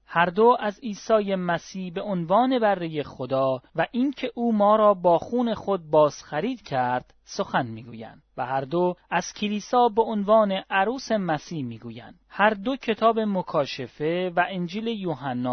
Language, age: Persian, 30-49